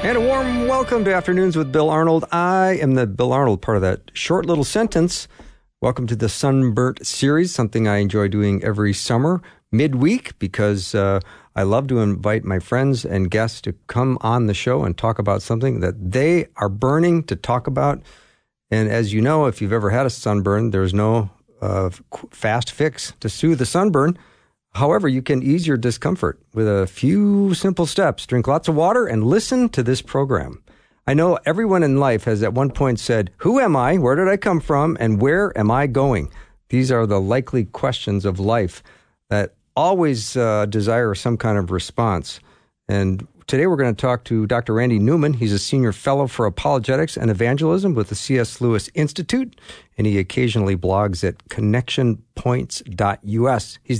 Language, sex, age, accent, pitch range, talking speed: English, male, 50-69, American, 105-145 Hz, 185 wpm